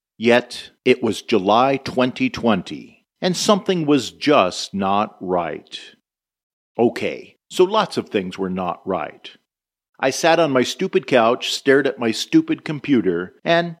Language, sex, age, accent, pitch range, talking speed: English, male, 50-69, American, 100-135 Hz, 135 wpm